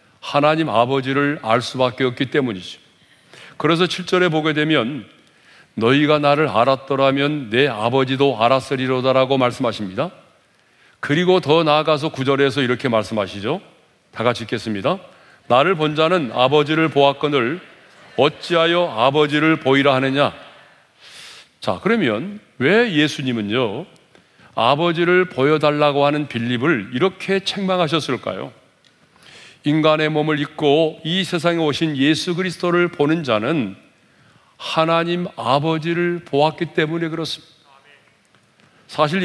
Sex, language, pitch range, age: male, Korean, 135-165 Hz, 40-59